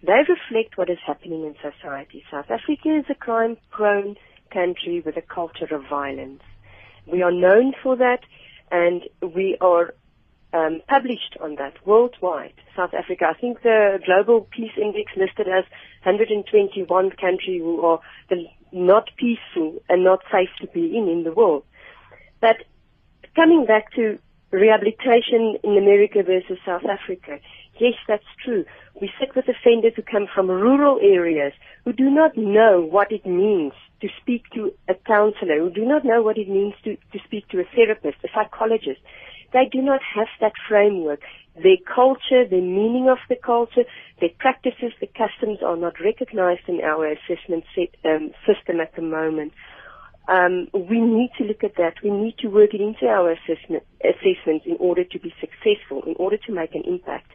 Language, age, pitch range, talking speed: English, 40-59, 175-235 Hz, 170 wpm